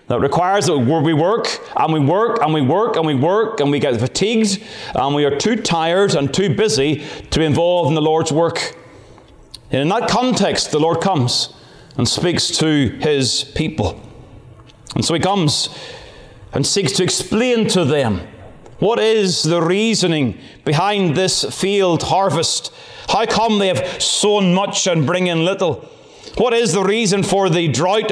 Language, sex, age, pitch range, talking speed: English, male, 30-49, 150-200 Hz, 170 wpm